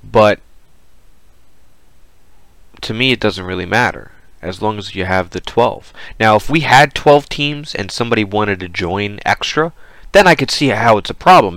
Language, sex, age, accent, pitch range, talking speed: English, male, 30-49, American, 95-135 Hz, 175 wpm